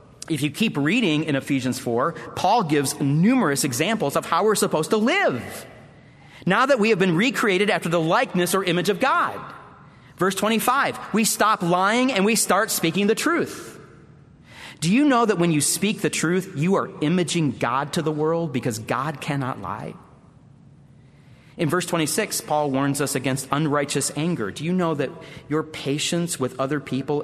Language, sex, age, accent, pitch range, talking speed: English, male, 40-59, American, 140-175 Hz, 175 wpm